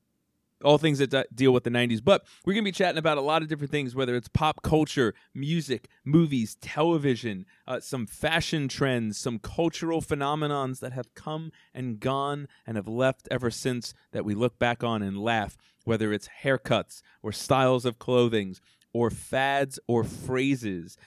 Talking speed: 175 wpm